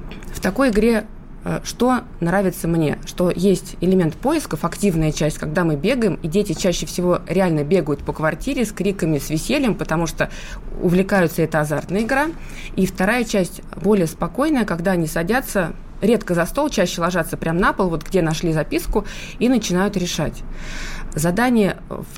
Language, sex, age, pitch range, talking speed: Russian, female, 20-39, 170-215 Hz, 155 wpm